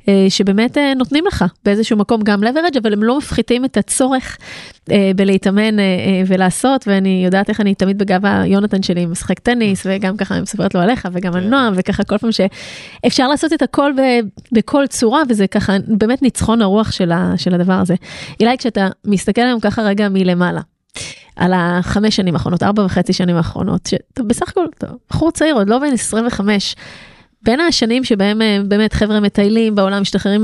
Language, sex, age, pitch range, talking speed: Hebrew, female, 20-39, 190-225 Hz, 170 wpm